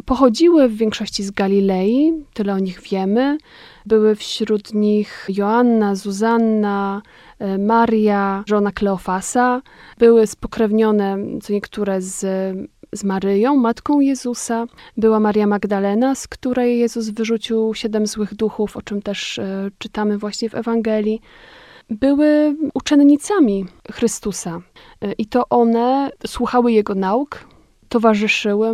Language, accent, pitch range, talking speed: Polish, native, 205-245 Hz, 110 wpm